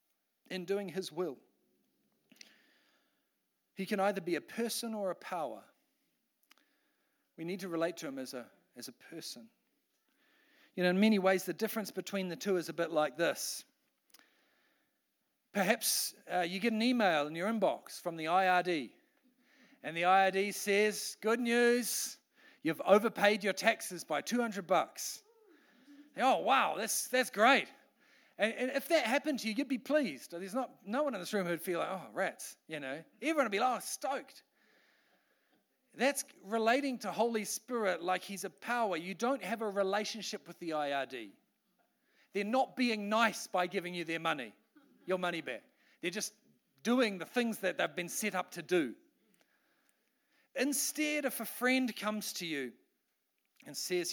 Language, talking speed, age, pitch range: English, 165 wpm, 40-59, 185-255 Hz